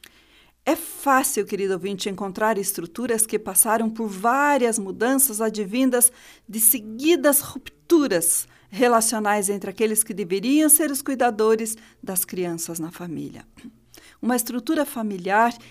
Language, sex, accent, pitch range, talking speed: Portuguese, female, Brazilian, 195-250 Hz, 115 wpm